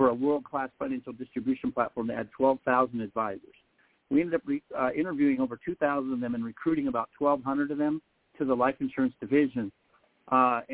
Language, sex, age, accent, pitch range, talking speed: English, male, 50-69, American, 125-180 Hz, 180 wpm